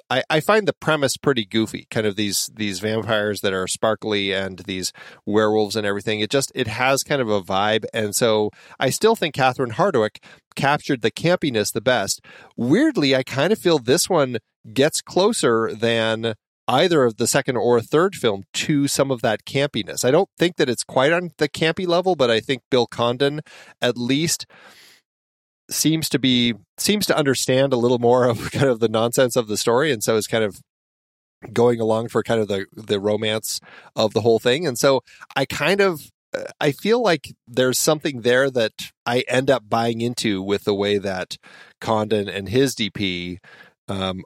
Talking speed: 185 wpm